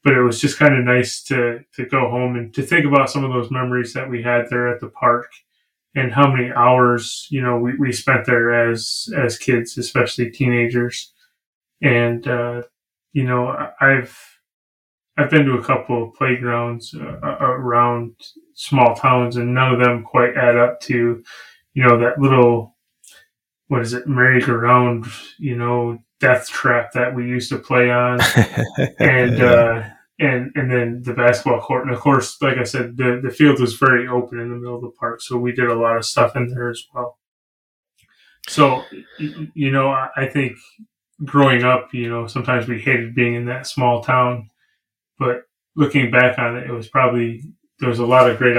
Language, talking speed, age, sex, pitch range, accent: English, 190 wpm, 20-39, male, 120-130 Hz, American